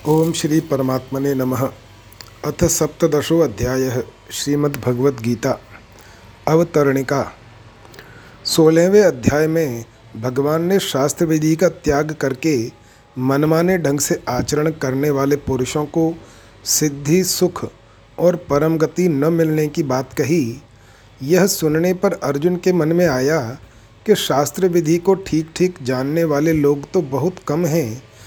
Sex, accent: male, native